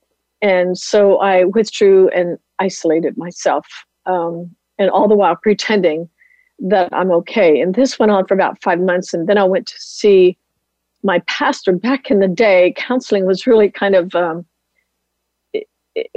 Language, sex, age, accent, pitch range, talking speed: English, female, 50-69, American, 180-220 Hz, 160 wpm